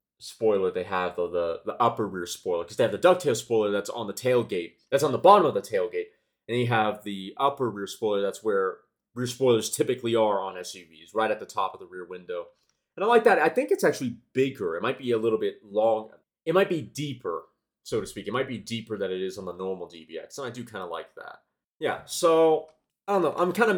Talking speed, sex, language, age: 245 wpm, male, English, 30-49